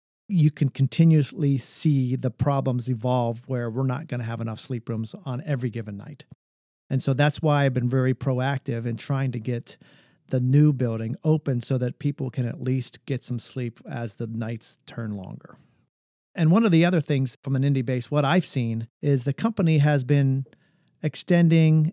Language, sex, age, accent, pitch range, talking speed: English, male, 50-69, American, 125-150 Hz, 190 wpm